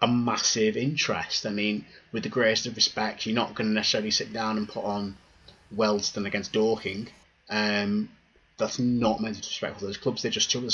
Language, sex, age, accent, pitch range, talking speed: English, male, 20-39, British, 100-120 Hz, 205 wpm